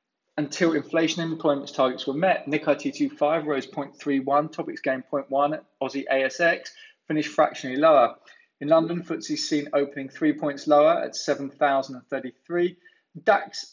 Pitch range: 140-165 Hz